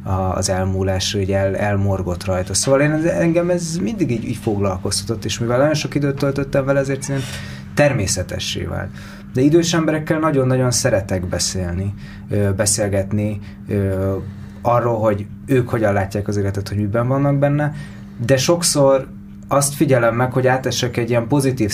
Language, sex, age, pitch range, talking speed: Hungarian, male, 20-39, 100-125 Hz, 140 wpm